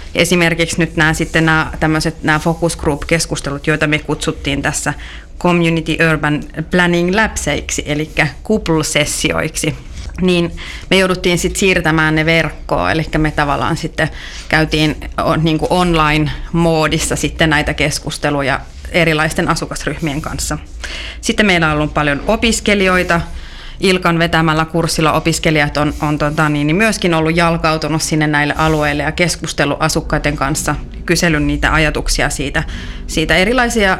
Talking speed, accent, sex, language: 120 wpm, native, female, Finnish